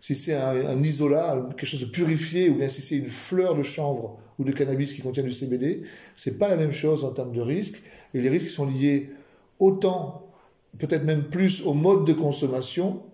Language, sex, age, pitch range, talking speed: French, male, 40-59, 130-160 Hz, 215 wpm